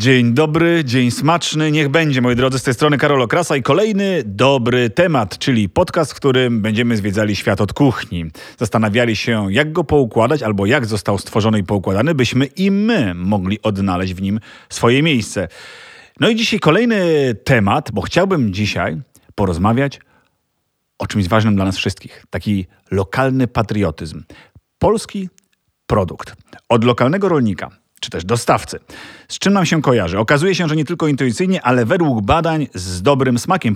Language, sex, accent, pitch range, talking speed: Polish, male, native, 105-145 Hz, 160 wpm